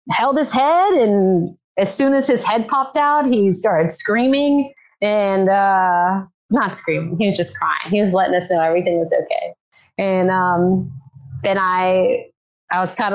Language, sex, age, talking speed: English, female, 30-49, 170 wpm